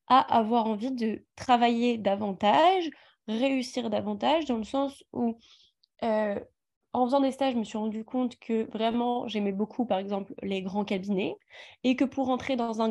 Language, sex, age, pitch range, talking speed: English, female, 20-39, 205-245 Hz, 170 wpm